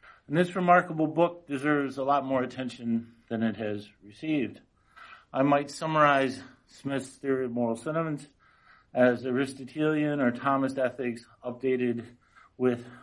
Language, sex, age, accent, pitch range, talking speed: English, male, 50-69, American, 120-140 Hz, 130 wpm